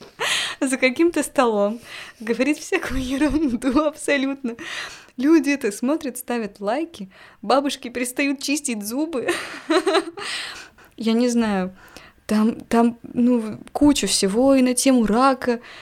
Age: 20-39